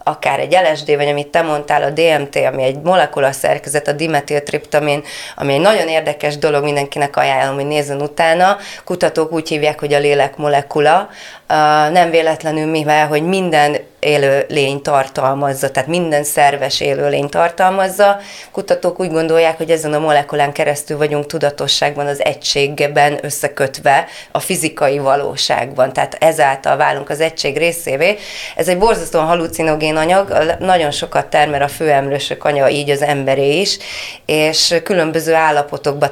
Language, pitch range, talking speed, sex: Hungarian, 145-165 Hz, 140 wpm, female